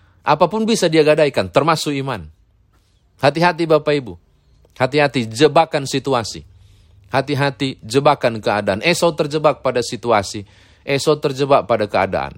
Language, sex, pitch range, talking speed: Indonesian, male, 100-145 Hz, 110 wpm